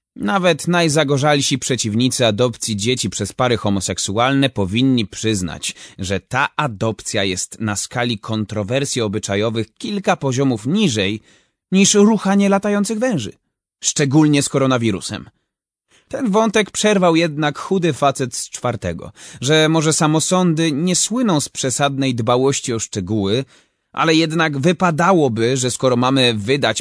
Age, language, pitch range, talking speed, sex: 30-49, Polish, 110-160 Hz, 120 wpm, male